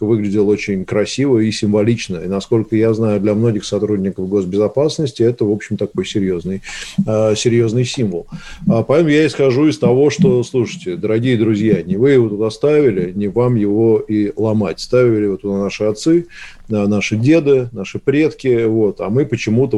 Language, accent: Russian, native